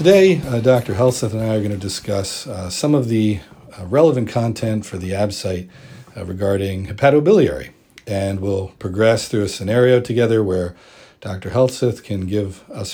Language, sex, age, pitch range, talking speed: English, male, 50-69, 95-125 Hz, 170 wpm